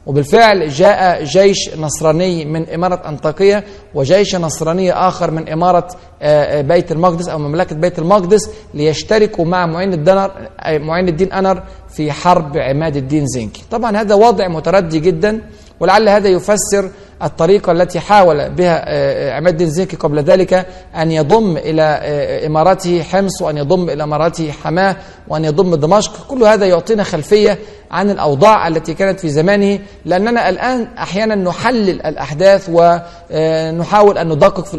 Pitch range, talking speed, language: 165-200 Hz, 135 wpm, Arabic